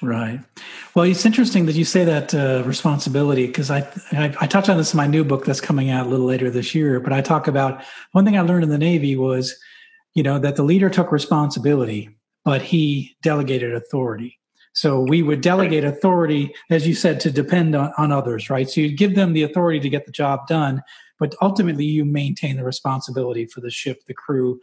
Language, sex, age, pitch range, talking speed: English, male, 40-59, 130-160 Hz, 215 wpm